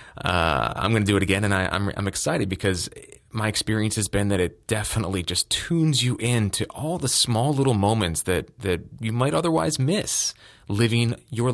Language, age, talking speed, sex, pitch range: English, 20-39, 200 wpm, male, 85-115 Hz